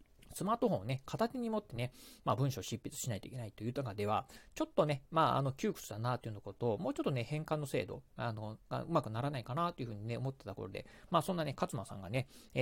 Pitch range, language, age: 115-165 Hz, Japanese, 40-59